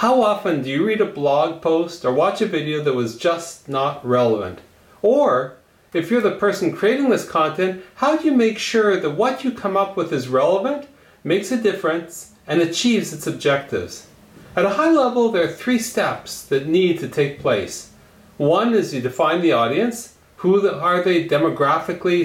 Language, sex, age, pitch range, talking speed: English, male, 40-59, 160-215 Hz, 185 wpm